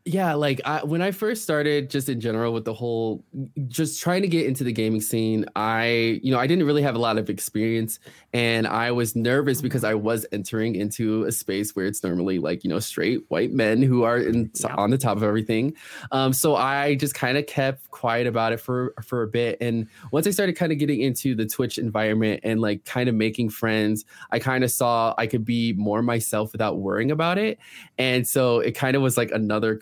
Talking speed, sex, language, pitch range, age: 225 wpm, male, English, 115-140 Hz, 20-39